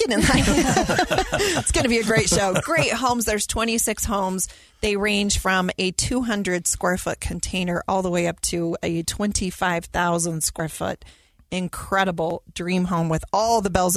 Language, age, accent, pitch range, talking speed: English, 30-49, American, 165-195 Hz, 165 wpm